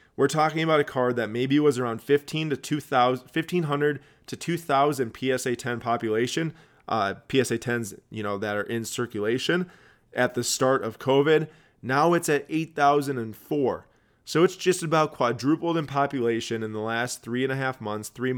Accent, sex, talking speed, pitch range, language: American, male, 160 wpm, 115-140 Hz, English